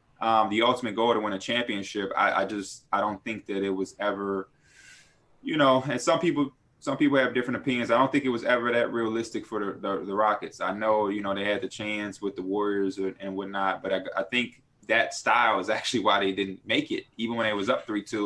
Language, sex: English, male